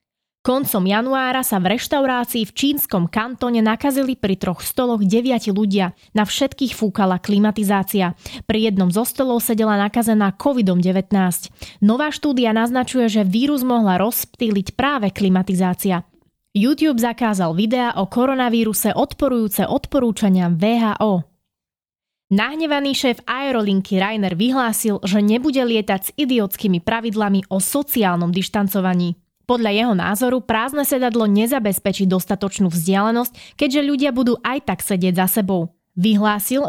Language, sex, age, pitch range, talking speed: Slovak, female, 20-39, 195-250 Hz, 120 wpm